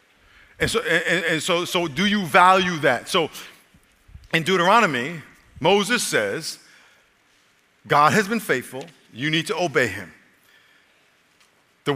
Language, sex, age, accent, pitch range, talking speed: English, male, 50-69, American, 110-155 Hz, 125 wpm